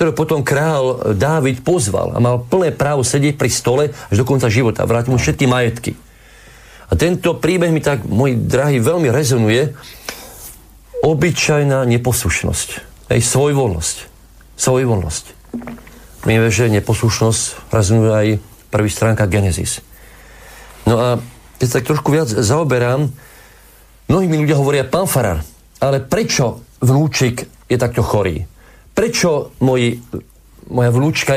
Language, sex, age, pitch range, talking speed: Slovak, male, 50-69, 110-140 Hz, 130 wpm